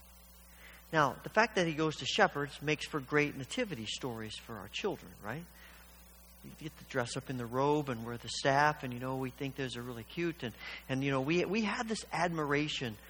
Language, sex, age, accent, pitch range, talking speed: English, male, 50-69, American, 125-185 Hz, 215 wpm